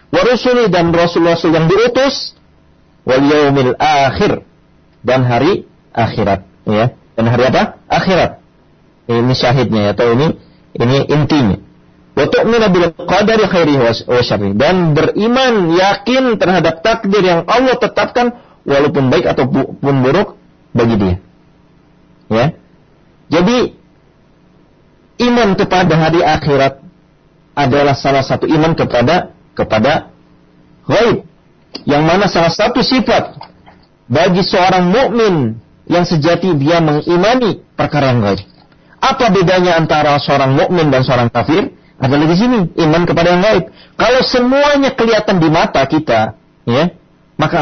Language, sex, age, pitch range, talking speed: Malay, male, 40-59, 130-195 Hz, 120 wpm